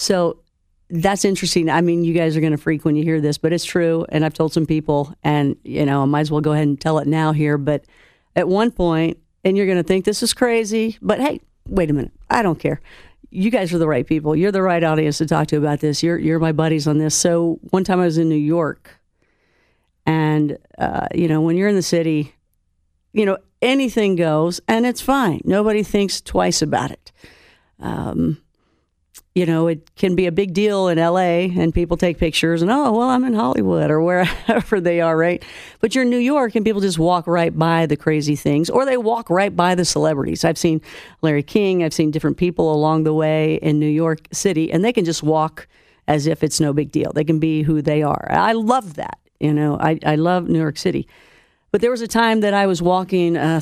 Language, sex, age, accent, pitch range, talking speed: English, female, 50-69, American, 155-190 Hz, 230 wpm